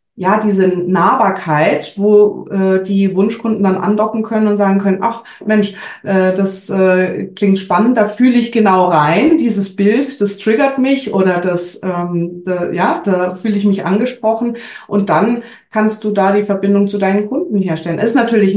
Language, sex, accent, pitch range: German, female, German, 180-215 Hz